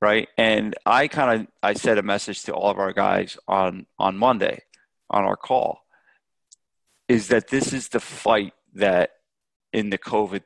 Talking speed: 170 wpm